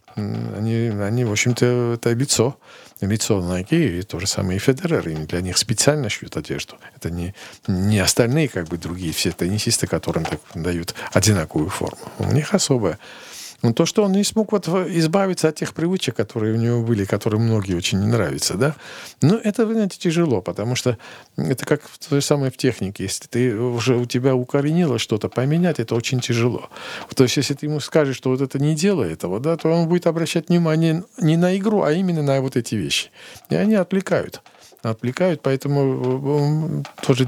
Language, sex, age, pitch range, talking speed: Russian, male, 50-69, 110-155 Hz, 185 wpm